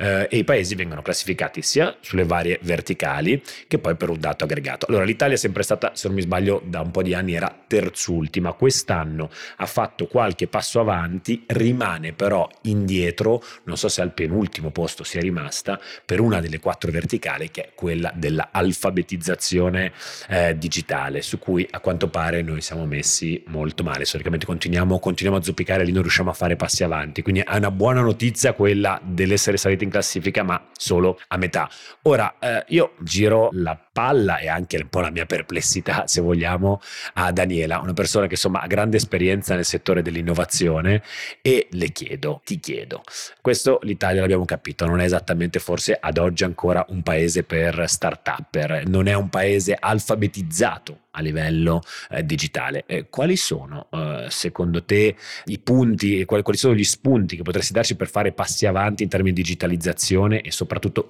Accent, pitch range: native, 85-100 Hz